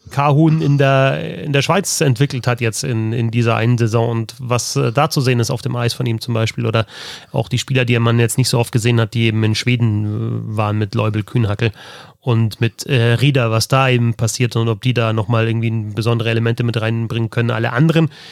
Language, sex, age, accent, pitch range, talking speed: German, male, 30-49, German, 115-140 Hz, 225 wpm